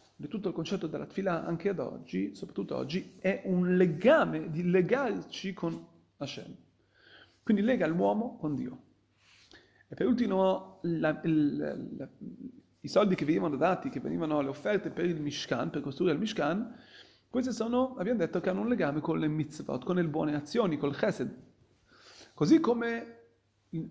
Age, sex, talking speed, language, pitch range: 40-59, male, 165 wpm, Italian, 165-235 Hz